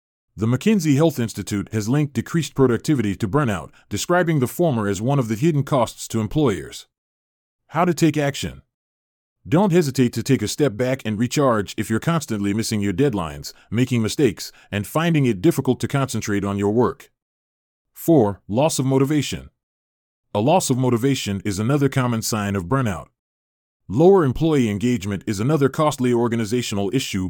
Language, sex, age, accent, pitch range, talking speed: English, male, 30-49, American, 100-140 Hz, 160 wpm